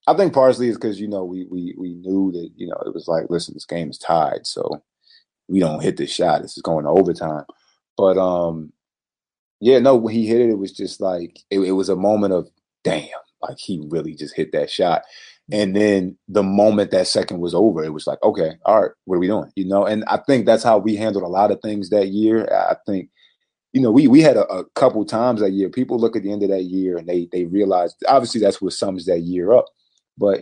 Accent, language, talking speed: American, English, 245 wpm